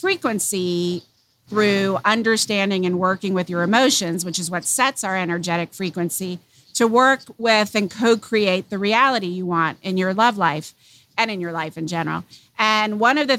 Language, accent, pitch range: English, American, 180-215 Hz